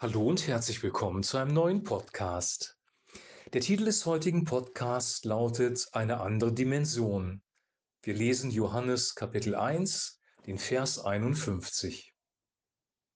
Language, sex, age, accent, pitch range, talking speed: German, male, 40-59, German, 105-130 Hz, 115 wpm